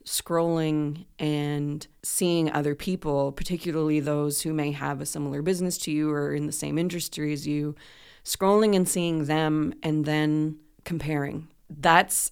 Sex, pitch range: female, 145-165 Hz